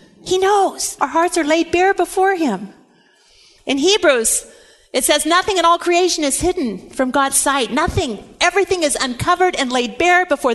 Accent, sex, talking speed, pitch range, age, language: American, female, 170 wpm, 285-335 Hz, 50-69, English